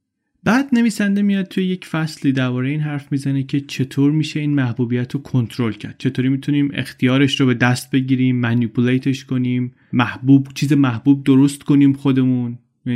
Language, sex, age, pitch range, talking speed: Persian, male, 30-49, 120-145 Hz, 155 wpm